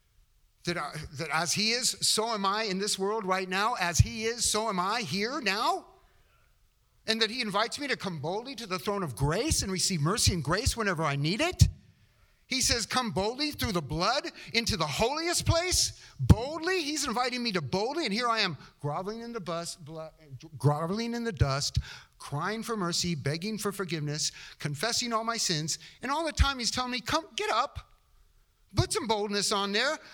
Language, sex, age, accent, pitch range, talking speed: English, male, 50-69, American, 160-235 Hz, 185 wpm